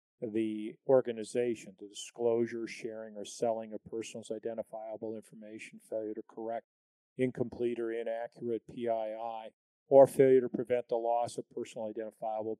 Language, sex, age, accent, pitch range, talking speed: English, male, 40-59, American, 110-130 Hz, 130 wpm